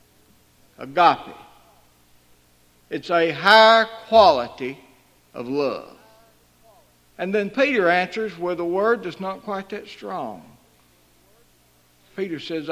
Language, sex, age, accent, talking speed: English, male, 60-79, American, 100 wpm